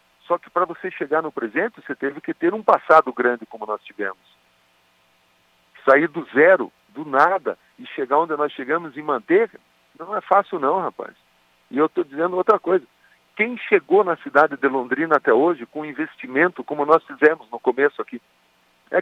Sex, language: male, Portuguese